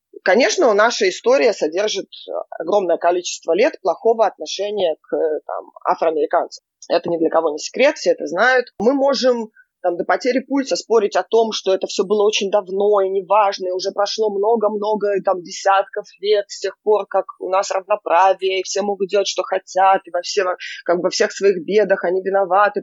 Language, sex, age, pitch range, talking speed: Russian, female, 20-39, 195-275 Hz, 175 wpm